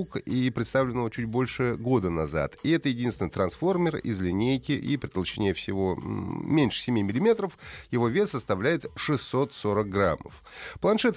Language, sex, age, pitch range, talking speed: Russian, male, 30-49, 95-145 Hz, 135 wpm